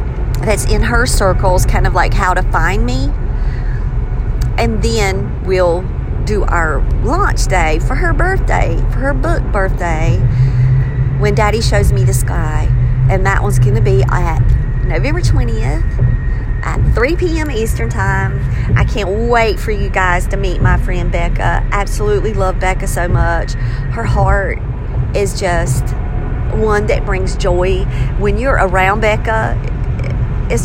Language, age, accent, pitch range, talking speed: English, 40-59, American, 115-125 Hz, 145 wpm